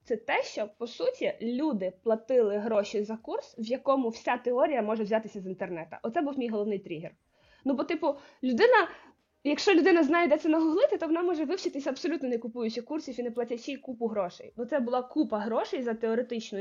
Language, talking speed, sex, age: Ukrainian, 195 wpm, female, 20-39